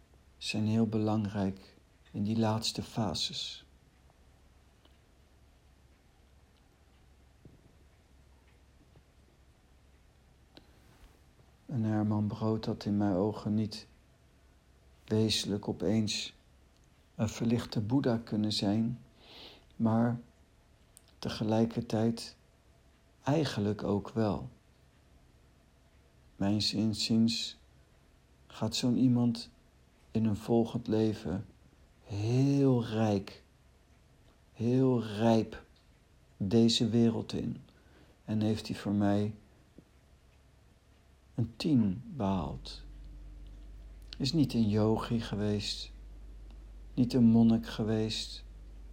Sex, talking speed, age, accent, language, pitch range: male, 75 wpm, 60-79, Dutch, Dutch, 70-115 Hz